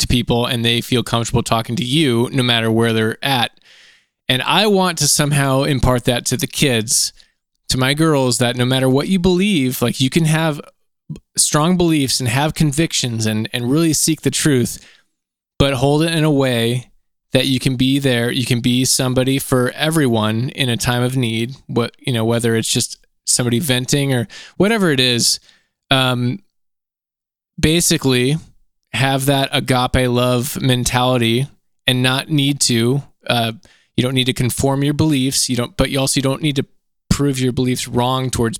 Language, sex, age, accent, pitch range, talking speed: English, male, 20-39, American, 120-140 Hz, 175 wpm